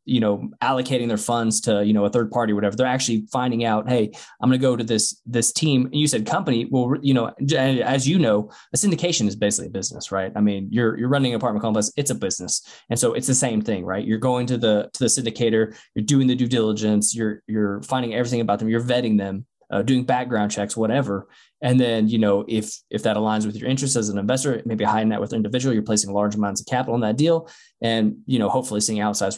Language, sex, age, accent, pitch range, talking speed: English, male, 20-39, American, 105-130 Hz, 245 wpm